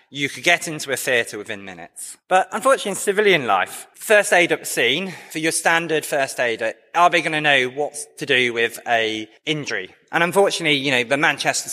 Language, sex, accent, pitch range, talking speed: English, male, British, 150-200 Hz, 200 wpm